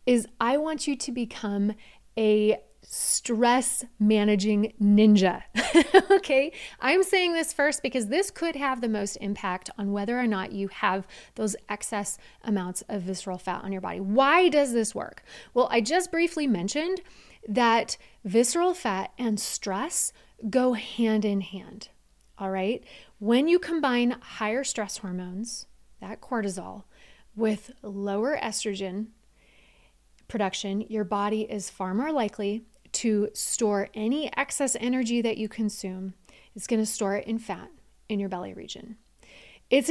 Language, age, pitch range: English, 30-49, 205-255 Hz